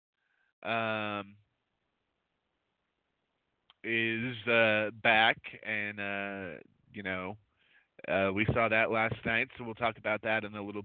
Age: 30-49